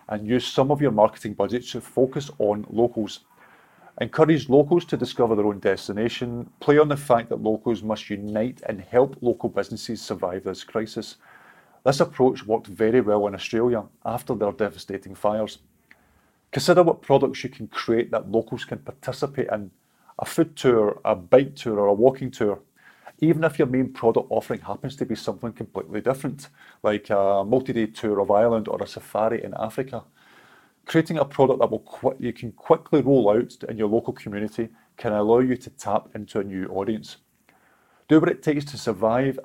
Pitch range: 105-130 Hz